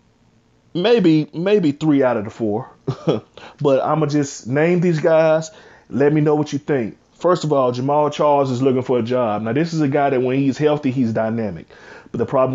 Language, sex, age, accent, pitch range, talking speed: English, male, 30-49, American, 120-150 Hz, 210 wpm